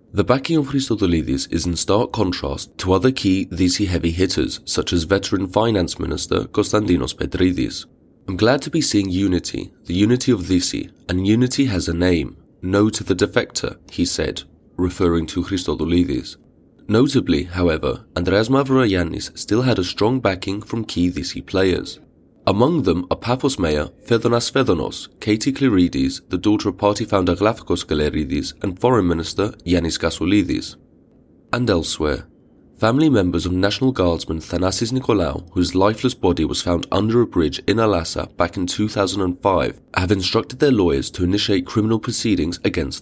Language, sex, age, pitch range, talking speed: English, male, 20-39, 85-115 Hz, 155 wpm